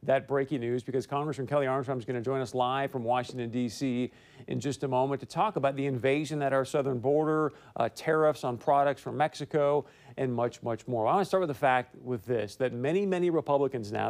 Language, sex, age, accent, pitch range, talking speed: English, male, 40-59, American, 125-145 Hz, 225 wpm